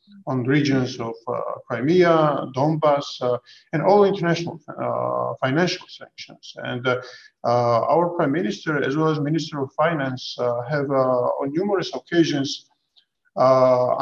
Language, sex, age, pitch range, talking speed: English, male, 50-69, 130-155 Hz, 135 wpm